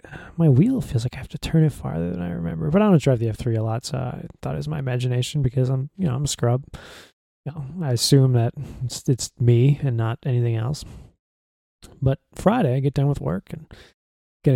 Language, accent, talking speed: English, American, 230 wpm